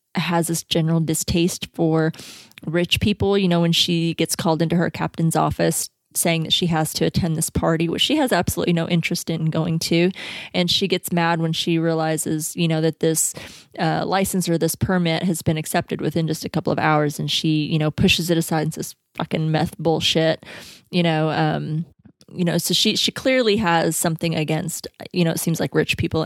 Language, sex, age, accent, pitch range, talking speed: English, female, 20-39, American, 160-185 Hz, 205 wpm